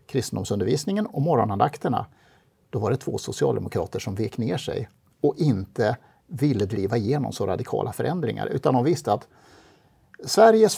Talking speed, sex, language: 140 wpm, male, Swedish